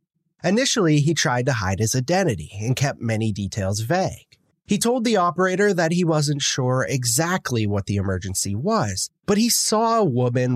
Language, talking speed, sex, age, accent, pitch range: English, 170 wpm, male, 30-49, American, 110-185 Hz